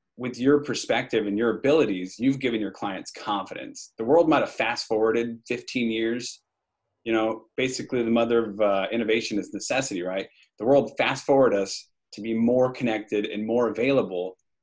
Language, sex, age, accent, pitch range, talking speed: English, male, 30-49, American, 105-120 Hz, 170 wpm